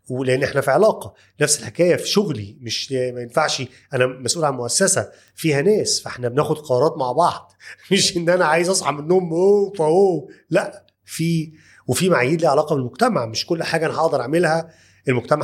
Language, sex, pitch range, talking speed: Arabic, male, 125-170 Hz, 170 wpm